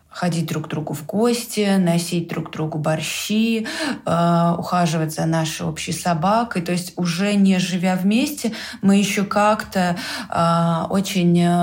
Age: 20-39